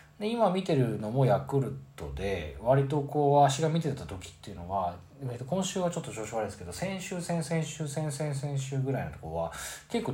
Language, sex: Japanese, male